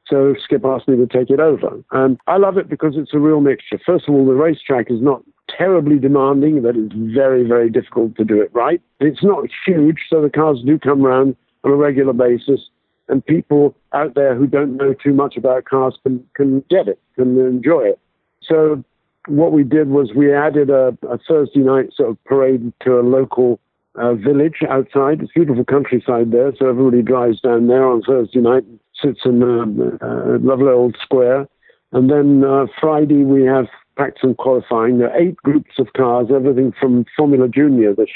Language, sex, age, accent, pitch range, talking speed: English, male, 50-69, British, 120-145 Hz, 200 wpm